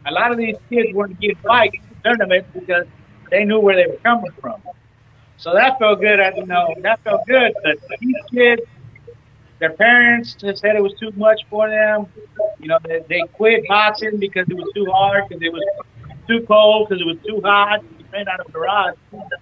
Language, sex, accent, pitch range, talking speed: English, male, American, 185-230 Hz, 215 wpm